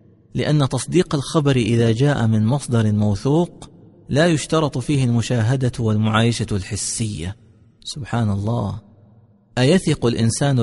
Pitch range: 120-155 Hz